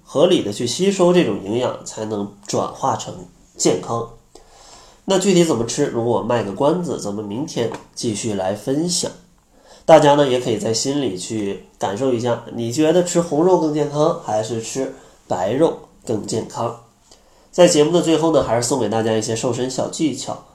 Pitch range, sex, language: 110-145 Hz, male, Chinese